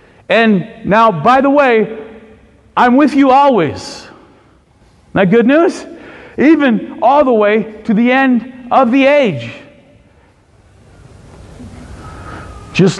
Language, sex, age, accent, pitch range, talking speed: English, male, 50-69, American, 140-205 Hz, 105 wpm